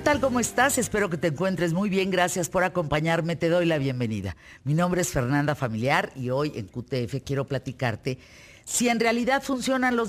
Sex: female